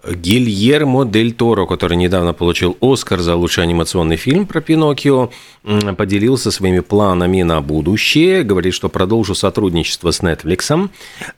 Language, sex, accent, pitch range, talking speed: Russian, male, native, 90-115 Hz, 120 wpm